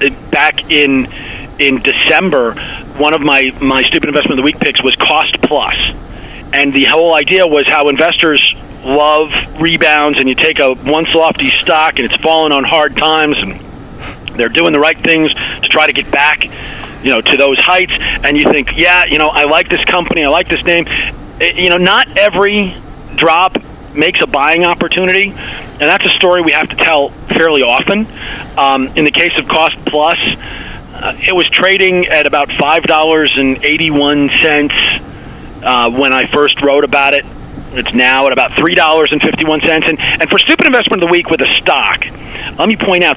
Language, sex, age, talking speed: English, male, 40-59, 190 wpm